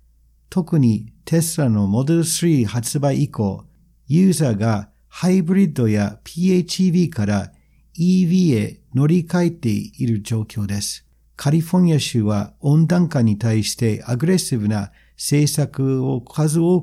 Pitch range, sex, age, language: 105-160 Hz, male, 50-69, Japanese